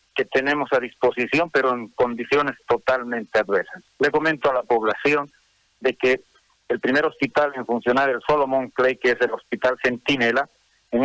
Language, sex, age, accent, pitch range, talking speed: Spanish, male, 50-69, Mexican, 125-145 Hz, 165 wpm